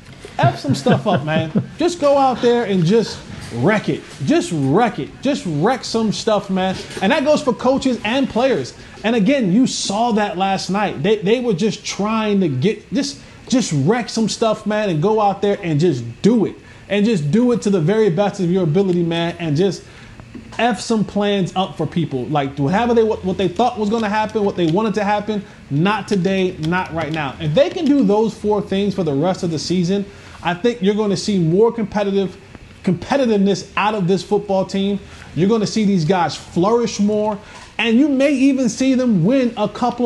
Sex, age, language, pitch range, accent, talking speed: male, 20-39, English, 170-215 Hz, American, 210 wpm